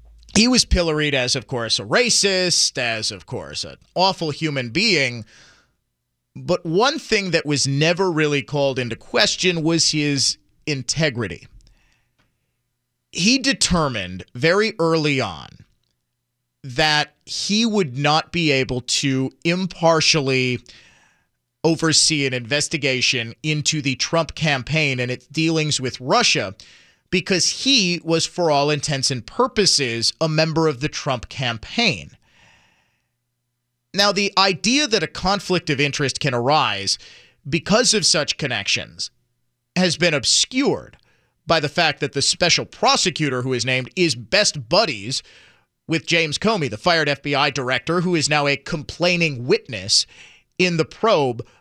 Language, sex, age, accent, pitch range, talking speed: English, male, 30-49, American, 125-170 Hz, 130 wpm